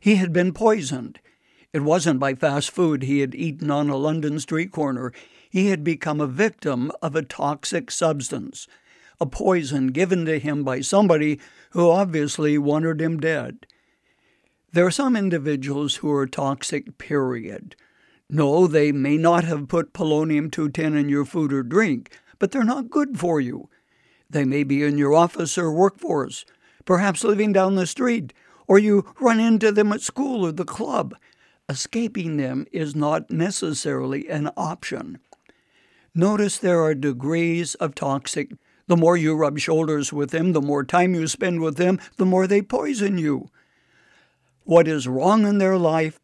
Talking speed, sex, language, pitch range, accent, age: 160 wpm, male, English, 145-190 Hz, American, 60-79